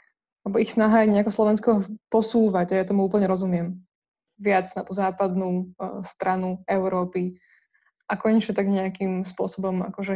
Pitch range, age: 190-225 Hz, 20-39